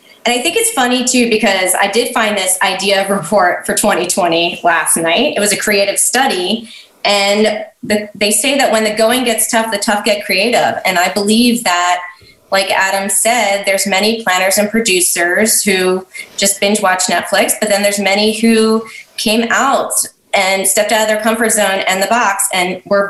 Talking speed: 185 wpm